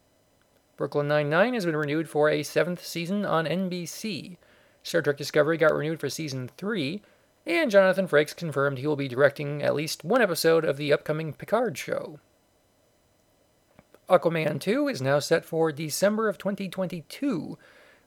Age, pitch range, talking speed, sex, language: 40-59, 145-180 Hz, 150 wpm, male, English